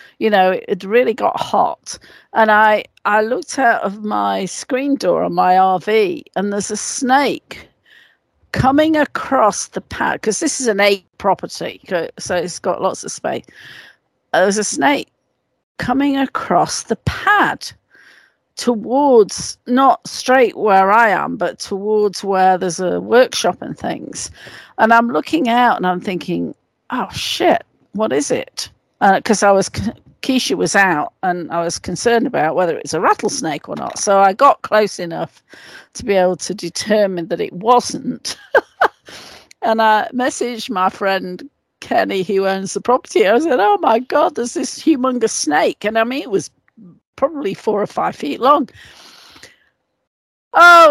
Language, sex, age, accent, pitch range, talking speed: English, female, 50-69, British, 195-270 Hz, 155 wpm